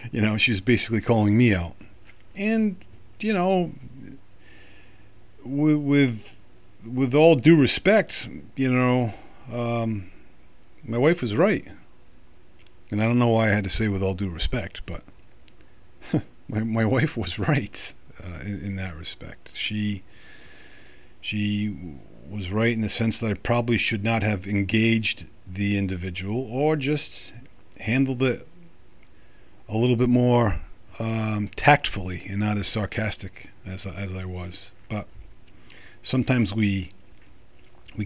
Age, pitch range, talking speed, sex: 40-59, 95-120 Hz, 135 wpm, male